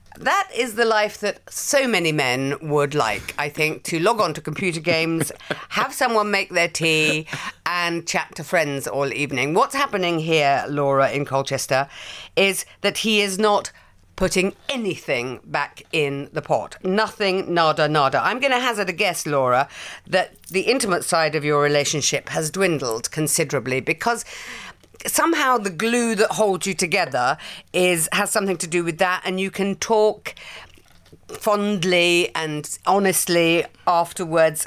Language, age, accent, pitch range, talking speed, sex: English, 50-69, British, 145-200 Hz, 155 wpm, female